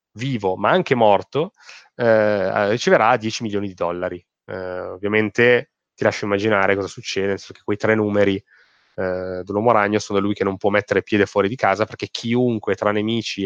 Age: 20-39